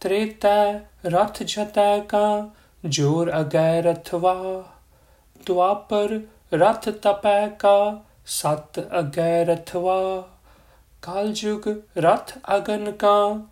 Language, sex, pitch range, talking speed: Punjabi, male, 160-210 Hz, 95 wpm